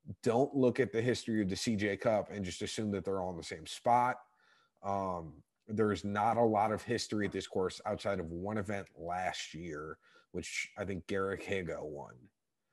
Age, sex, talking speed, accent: 30-49, male, 200 wpm, American